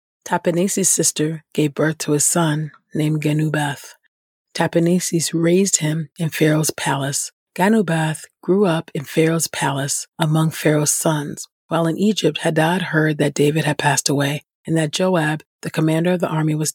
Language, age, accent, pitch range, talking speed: English, 40-59, American, 155-175 Hz, 155 wpm